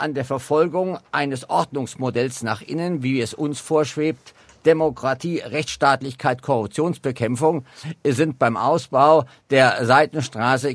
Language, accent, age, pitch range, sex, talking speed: German, German, 50-69, 130-180 Hz, male, 105 wpm